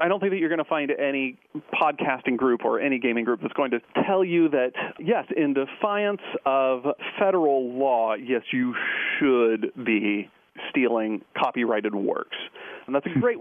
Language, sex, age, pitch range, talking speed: English, male, 40-59, 120-170 Hz, 170 wpm